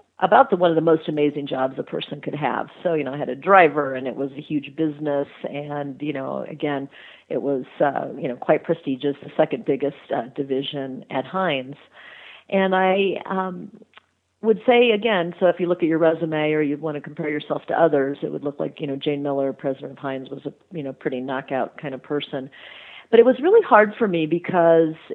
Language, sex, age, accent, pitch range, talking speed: English, female, 50-69, American, 140-170 Hz, 220 wpm